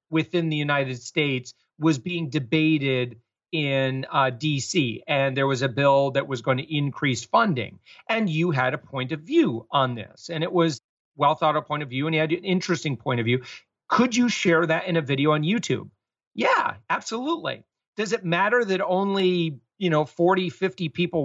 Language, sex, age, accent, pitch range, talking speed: English, male, 40-59, American, 140-180 Hz, 190 wpm